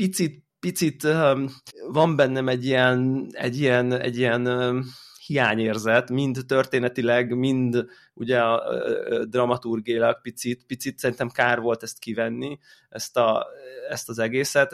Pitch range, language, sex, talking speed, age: 120-140 Hz, Hungarian, male, 125 wpm, 20-39